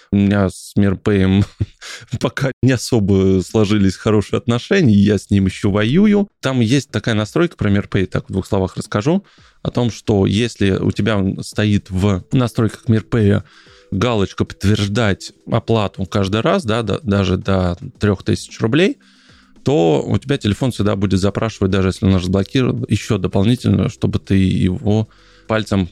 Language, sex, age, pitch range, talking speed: Russian, male, 20-39, 100-125 Hz, 150 wpm